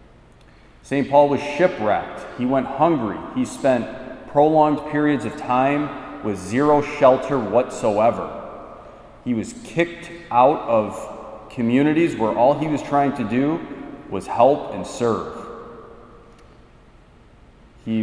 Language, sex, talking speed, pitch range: English, male, 115 wpm, 105-140 Hz